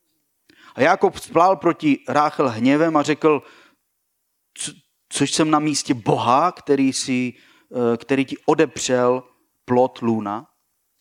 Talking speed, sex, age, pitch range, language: 115 wpm, male, 40-59, 140-175 Hz, Slovak